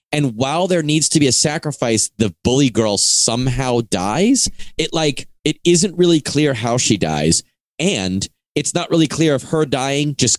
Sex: male